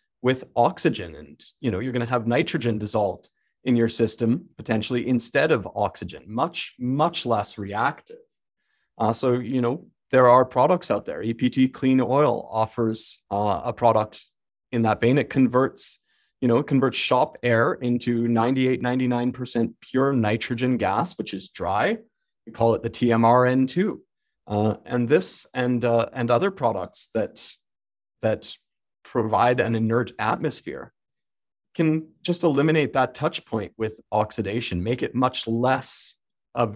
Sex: male